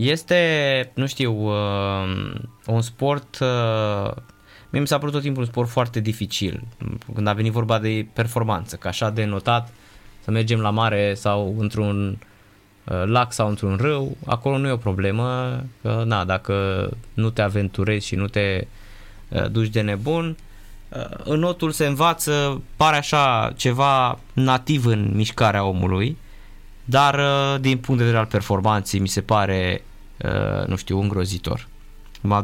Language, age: Romanian, 20-39